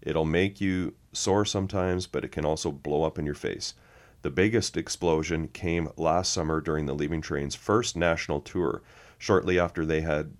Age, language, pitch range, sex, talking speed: 40-59, English, 75-95 Hz, male, 180 wpm